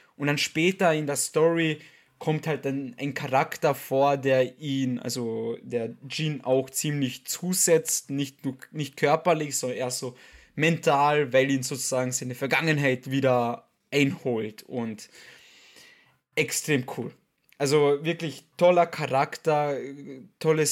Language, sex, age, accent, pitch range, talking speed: German, male, 20-39, German, 130-150 Hz, 120 wpm